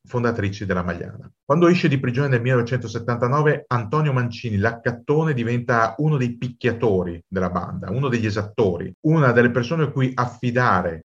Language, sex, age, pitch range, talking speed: Italian, male, 40-59, 100-130 Hz, 145 wpm